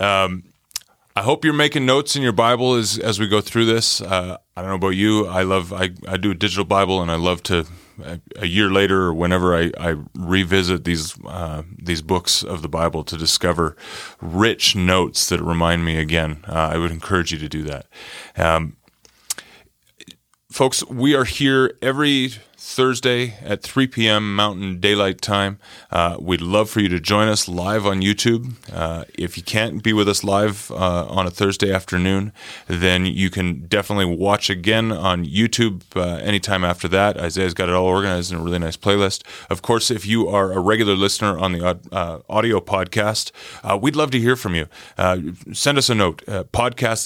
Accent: American